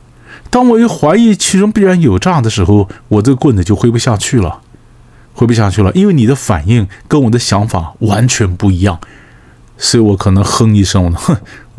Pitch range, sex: 100-145 Hz, male